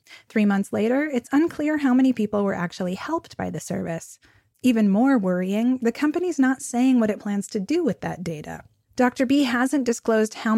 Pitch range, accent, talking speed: 195-240 Hz, American, 195 wpm